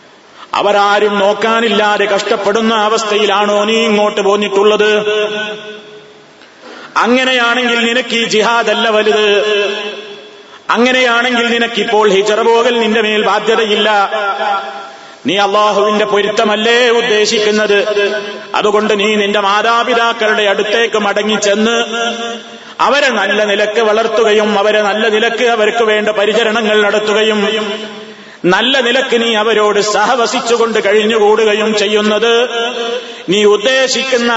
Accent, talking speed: native, 85 wpm